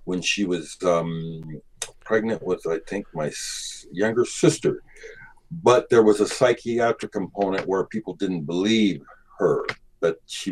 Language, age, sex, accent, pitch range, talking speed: English, 50-69, male, American, 95-120 Hz, 135 wpm